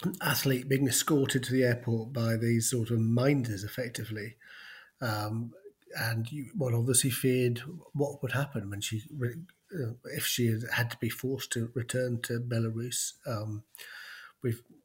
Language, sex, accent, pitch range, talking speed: English, male, British, 115-135 Hz, 150 wpm